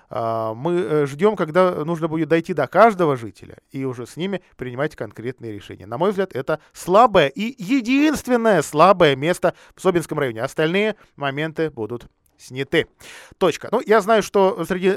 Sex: male